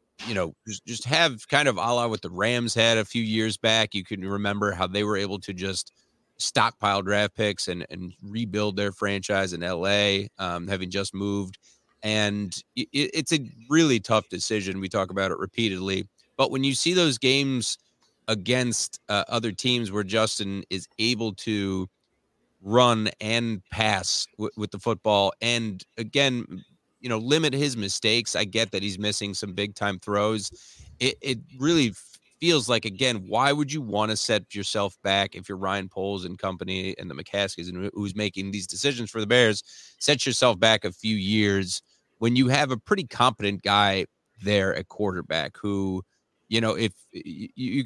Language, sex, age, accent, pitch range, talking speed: English, male, 30-49, American, 100-115 Hz, 175 wpm